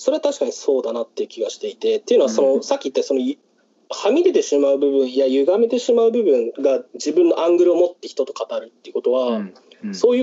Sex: male